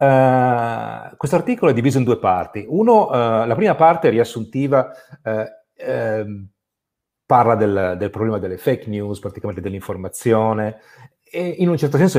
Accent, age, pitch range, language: native, 40-59, 105-145 Hz, Italian